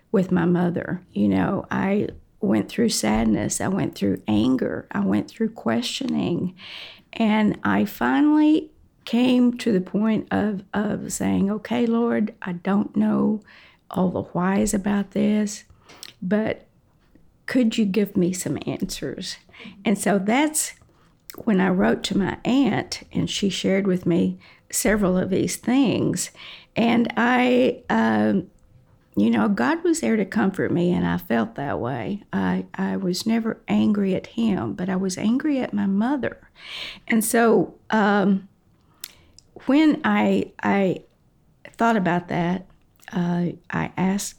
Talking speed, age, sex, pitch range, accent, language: 140 wpm, 50-69, female, 180-230 Hz, American, English